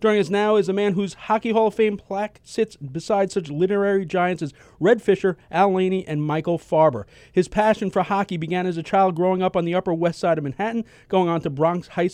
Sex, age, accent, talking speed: male, 40-59, American, 230 wpm